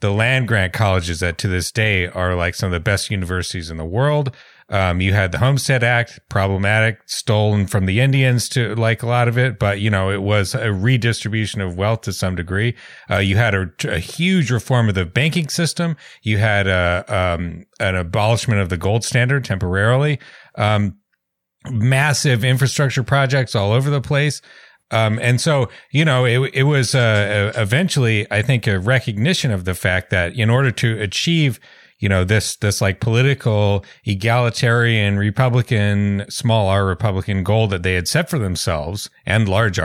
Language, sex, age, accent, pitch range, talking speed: English, male, 30-49, American, 100-130 Hz, 180 wpm